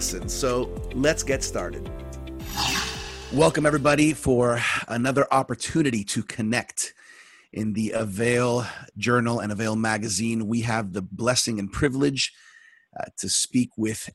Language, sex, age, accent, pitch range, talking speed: English, male, 30-49, American, 105-120 Hz, 120 wpm